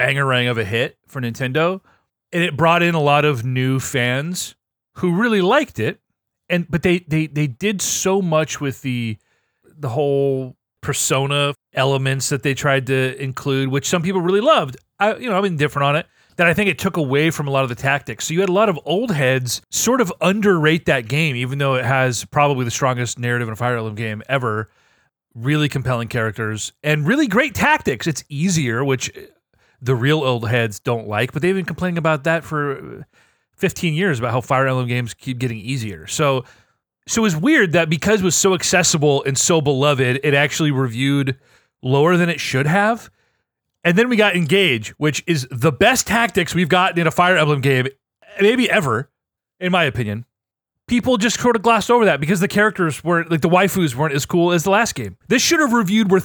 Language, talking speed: English, 205 wpm